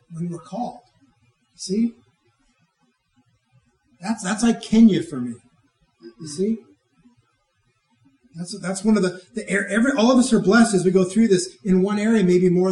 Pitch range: 130-205 Hz